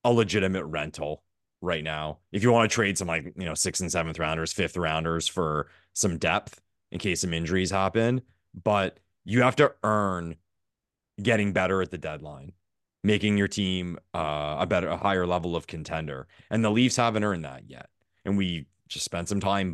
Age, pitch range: 30-49, 85-110 Hz